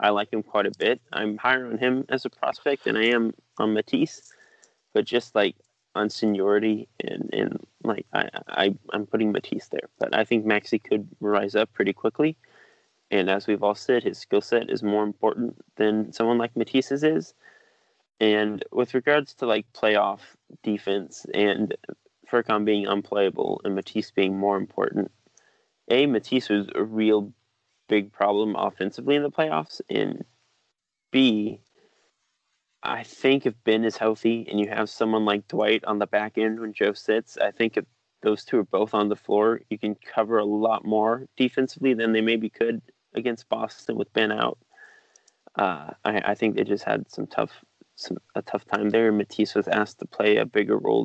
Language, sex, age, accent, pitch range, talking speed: English, male, 20-39, American, 105-120 Hz, 180 wpm